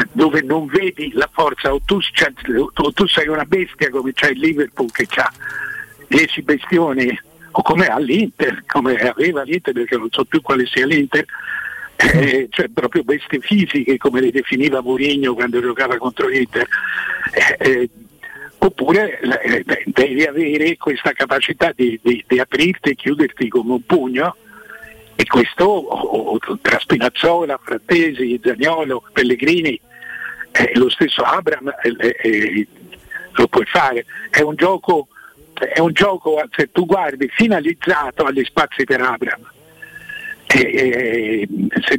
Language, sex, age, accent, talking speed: Italian, male, 60-79, native, 145 wpm